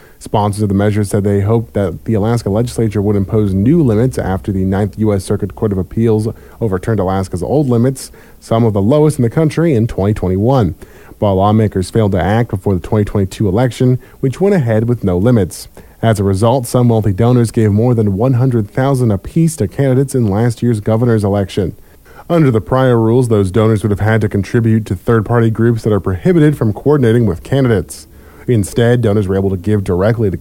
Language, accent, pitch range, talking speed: English, American, 100-125 Hz, 195 wpm